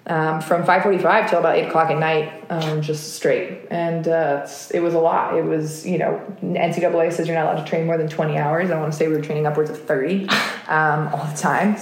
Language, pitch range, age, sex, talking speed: English, 155-175 Hz, 20-39, female, 240 wpm